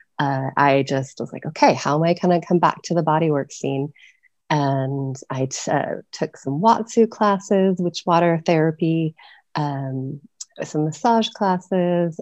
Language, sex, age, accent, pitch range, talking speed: English, female, 30-49, American, 135-175 Hz, 155 wpm